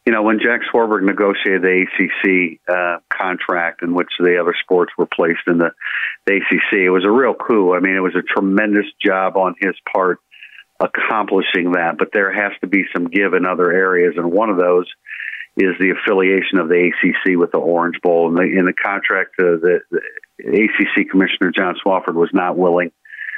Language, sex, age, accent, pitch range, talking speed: English, male, 50-69, American, 90-105 Hz, 200 wpm